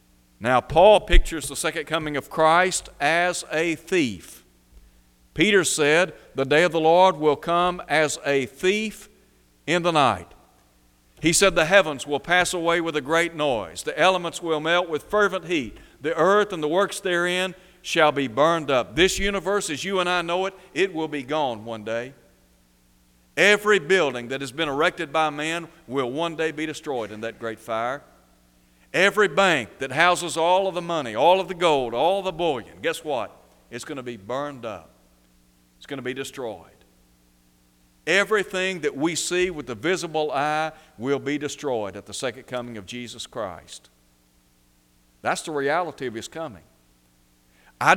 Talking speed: 175 wpm